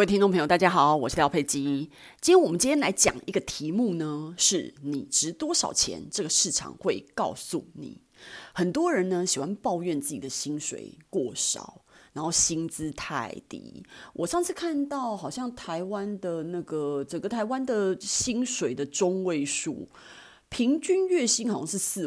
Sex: female